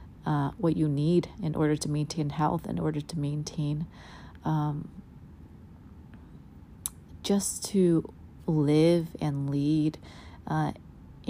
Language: English